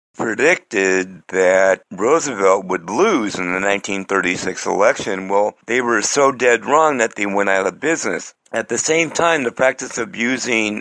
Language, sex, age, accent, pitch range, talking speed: English, male, 60-79, American, 95-120 Hz, 160 wpm